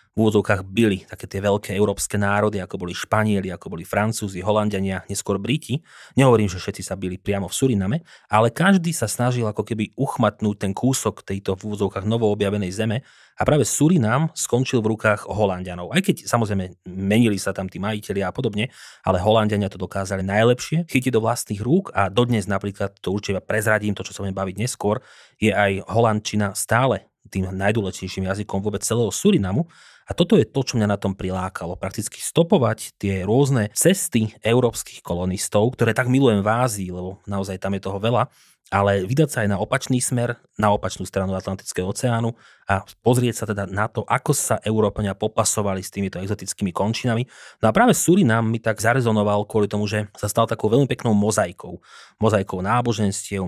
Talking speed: 175 wpm